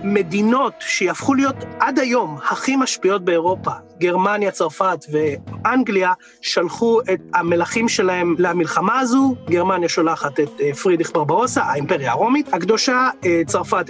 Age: 30-49